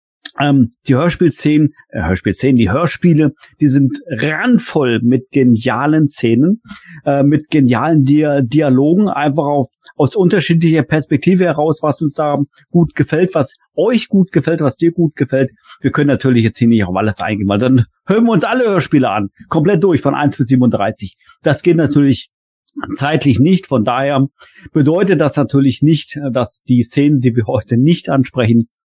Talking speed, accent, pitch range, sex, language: 160 wpm, German, 125-155 Hz, male, German